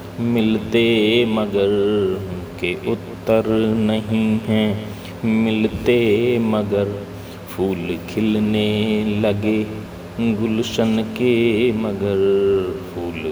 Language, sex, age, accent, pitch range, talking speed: Hindi, male, 30-49, native, 100-125 Hz, 70 wpm